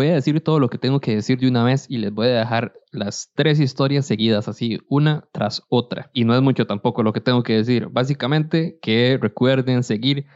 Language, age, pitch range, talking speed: Spanish, 20-39, 115-140 Hz, 225 wpm